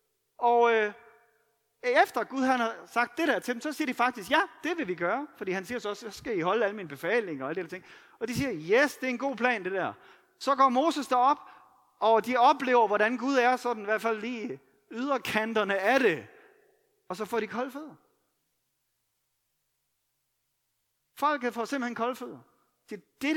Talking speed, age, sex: 200 wpm, 30-49, male